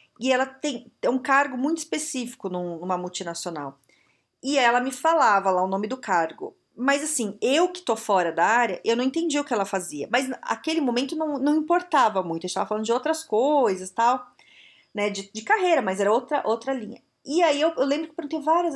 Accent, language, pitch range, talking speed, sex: Brazilian, Portuguese, 195-305 Hz, 210 wpm, female